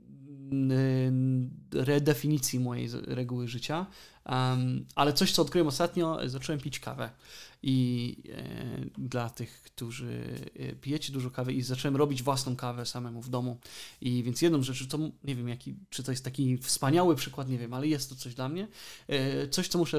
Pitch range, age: 120-140 Hz, 20-39